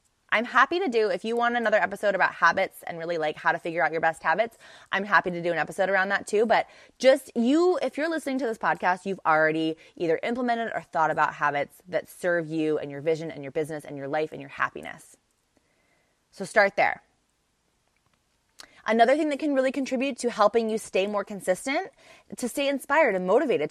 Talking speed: 210 wpm